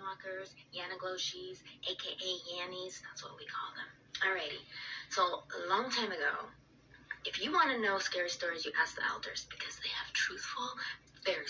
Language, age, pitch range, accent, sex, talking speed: English, 20-39, 190-255 Hz, American, female, 155 wpm